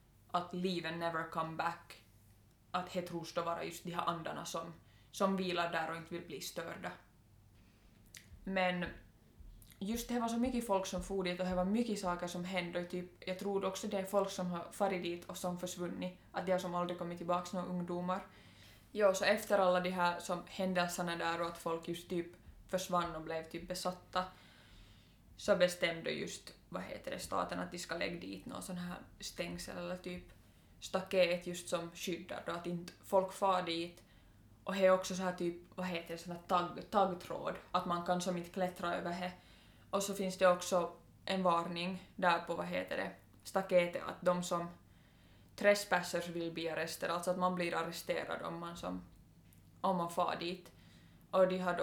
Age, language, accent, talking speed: 20-39, Swedish, Finnish, 190 wpm